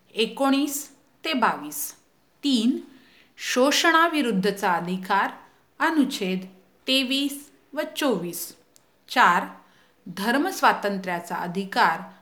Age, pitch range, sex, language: 50-69, 190-280 Hz, female, Hindi